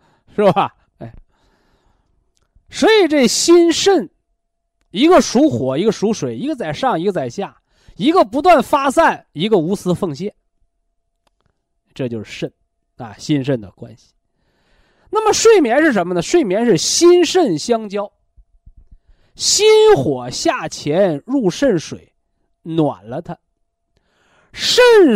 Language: Chinese